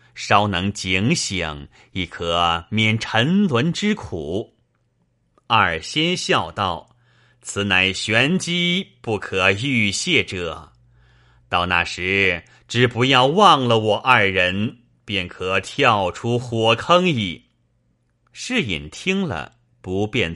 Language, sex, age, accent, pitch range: Chinese, male, 30-49, native, 90-125 Hz